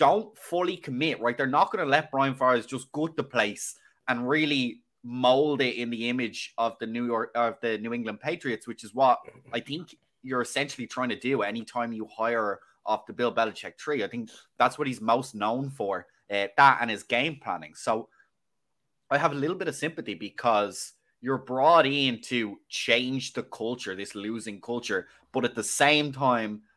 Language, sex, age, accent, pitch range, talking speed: English, male, 20-39, Irish, 110-130 Hz, 195 wpm